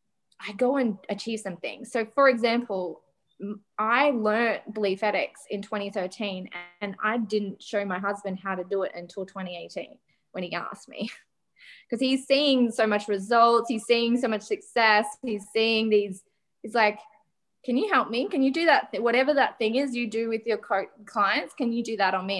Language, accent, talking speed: English, Australian, 190 wpm